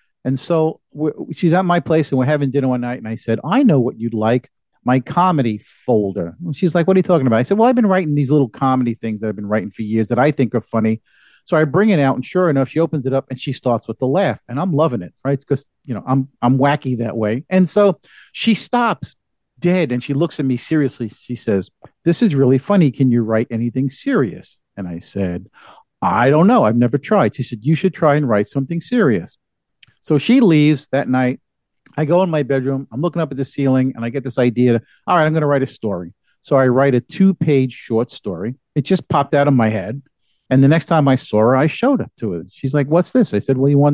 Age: 50-69